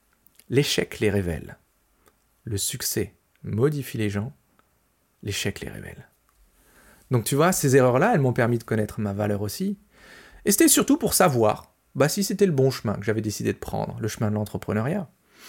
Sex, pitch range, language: male, 120-180 Hz, French